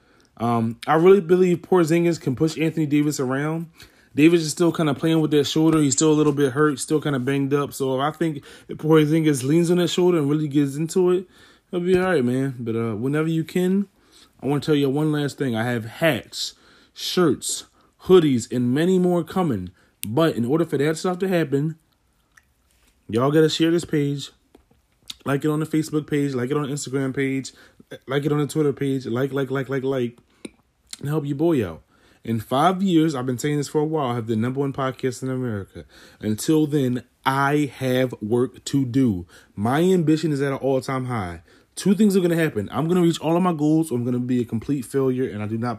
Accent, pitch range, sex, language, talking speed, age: American, 125-160 Hz, male, English, 225 wpm, 20-39